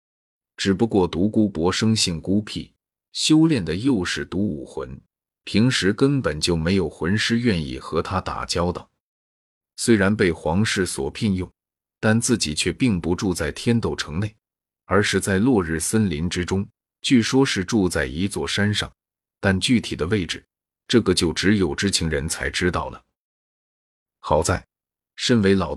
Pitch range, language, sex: 85-105 Hz, Chinese, male